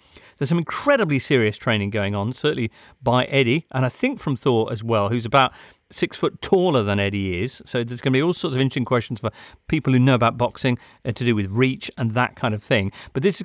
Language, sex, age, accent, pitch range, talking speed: English, male, 40-59, British, 115-150 Hz, 240 wpm